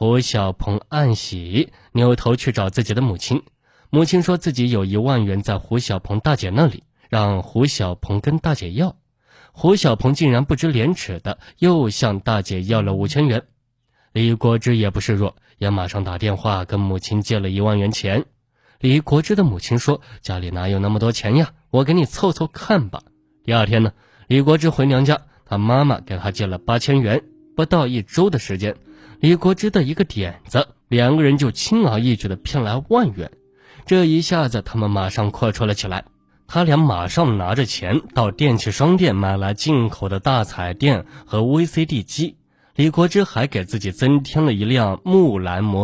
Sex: male